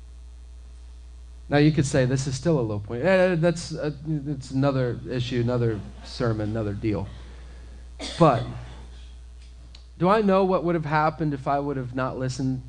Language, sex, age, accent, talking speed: English, male, 40-59, American, 155 wpm